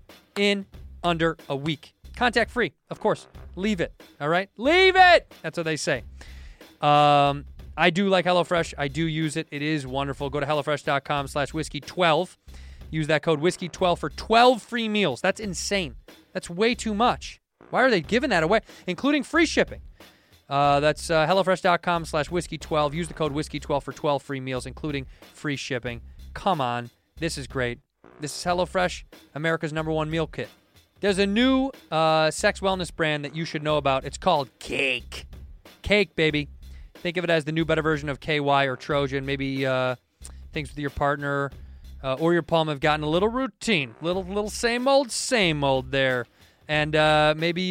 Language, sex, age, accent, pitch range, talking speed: English, male, 20-39, American, 140-180 Hz, 180 wpm